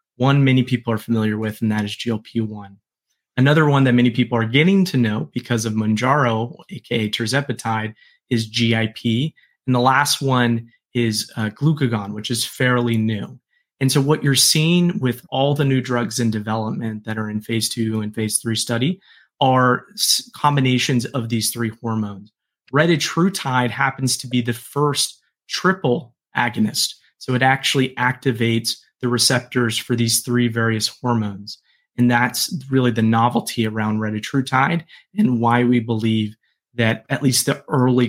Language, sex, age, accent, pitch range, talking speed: English, male, 30-49, American, 115-130 Hz, 155 wpm